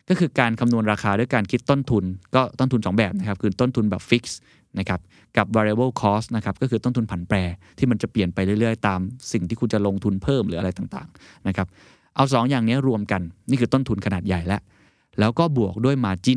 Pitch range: 100-125 Hz